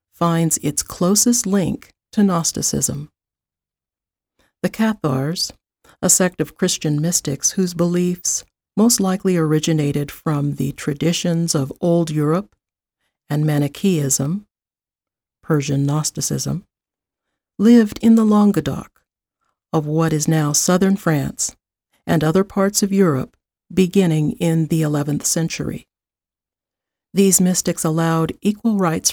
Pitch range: 155-195 Hz